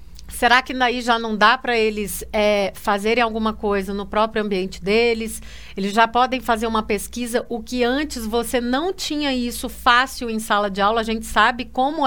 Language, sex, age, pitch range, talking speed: Portuguese, female, 40-59, 220-280 Hz, 185 wpm